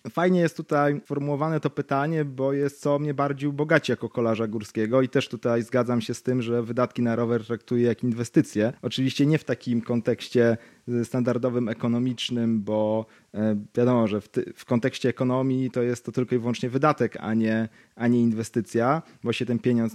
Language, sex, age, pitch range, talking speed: Polish, male, 30-49, 120-150 Hz, 175 wpm